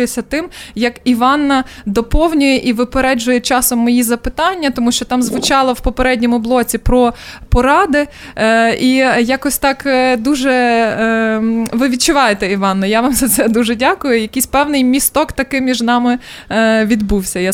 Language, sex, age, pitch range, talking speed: Ukrainian, female, 20-39, 225-270 Hz, 135 wpm